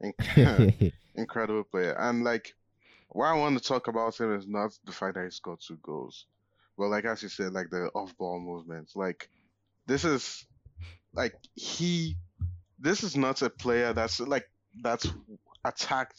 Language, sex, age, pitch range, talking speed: English, male, 20-39, 100-125 Hz, 160 wpm